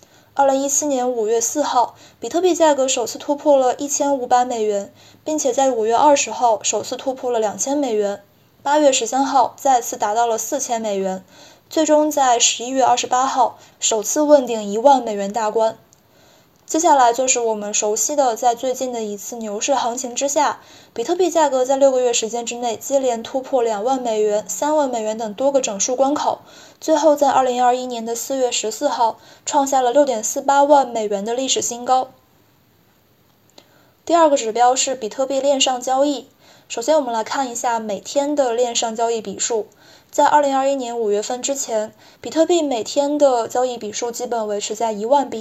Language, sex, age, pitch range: Chinese, female, 20-39, 230-280 Hz